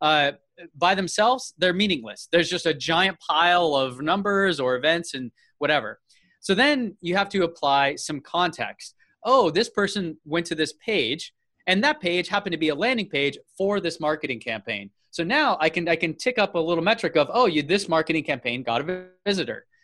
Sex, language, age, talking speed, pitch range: male, English, 20-39, 195 wpm, 150-200 Hz